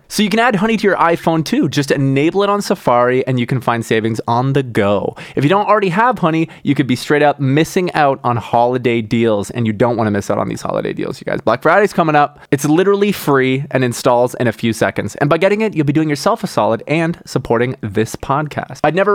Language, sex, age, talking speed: English, male, 20-39, 250 wpm